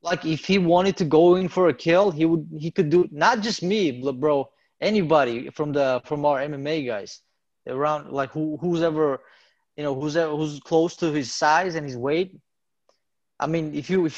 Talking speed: 205 wpm